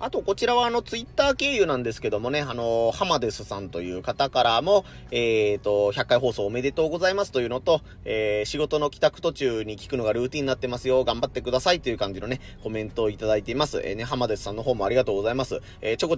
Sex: male